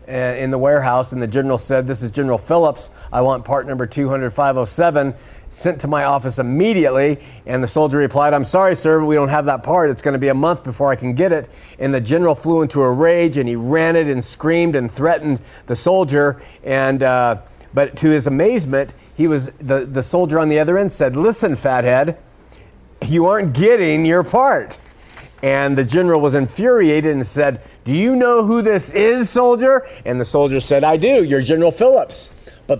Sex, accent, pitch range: male, American, 125-165 Hz